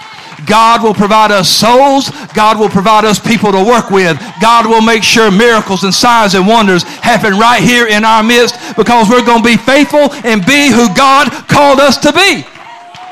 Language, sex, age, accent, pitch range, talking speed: English, male, 50-69, American, 200-250 Hz, 190 wpm